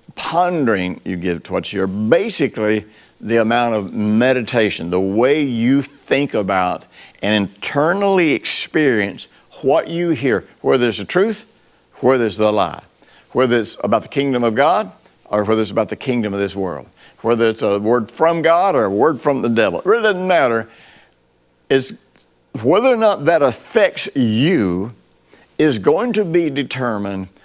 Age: 60-79